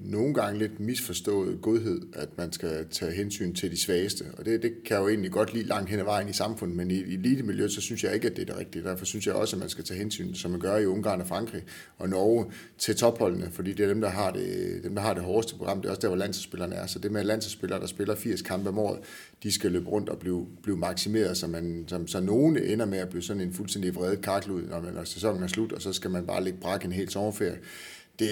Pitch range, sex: 90-115 Hz, male